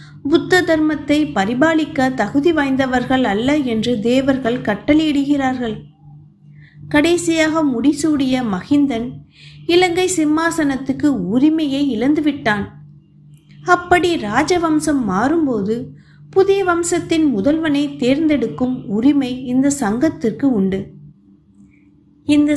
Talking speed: 75 wpm